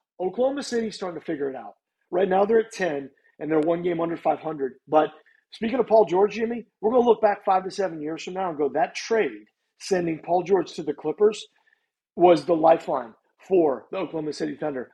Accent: American